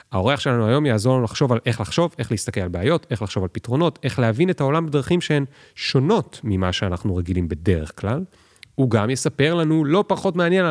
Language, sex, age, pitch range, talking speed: Hebrew, male, 30-49, 95-140 Hz, 200 wpm